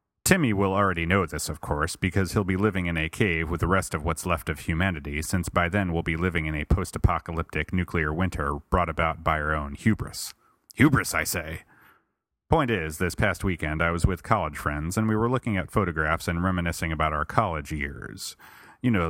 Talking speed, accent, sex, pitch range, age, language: 205 wpm, American, male, 80-95 Hz, 30-49, English